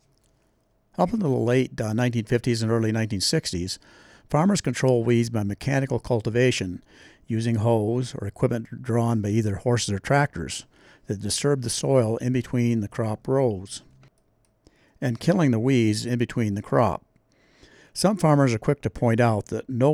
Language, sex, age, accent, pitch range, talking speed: English, male, 60-79, American, 105-130 Hz, 150 wpm